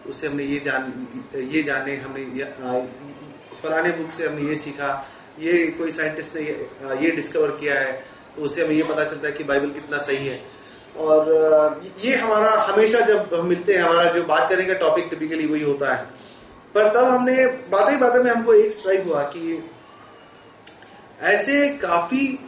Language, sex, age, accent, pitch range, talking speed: Hindi, male, 30-49, native, 150-210 Hz, 180 wpm